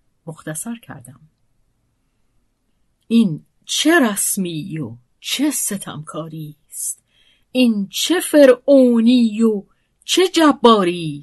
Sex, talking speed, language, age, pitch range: female, 80 wpm, Persian, 50-69, 145-205 Hz